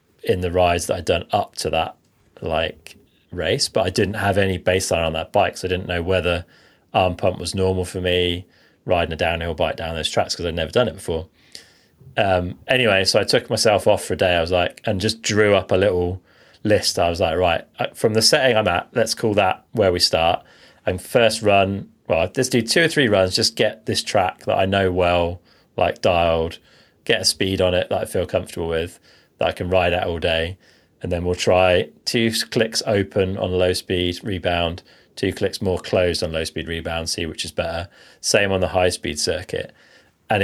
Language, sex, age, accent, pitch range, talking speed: English, male, 30-49, British, 85-95 Hz, 210 wpm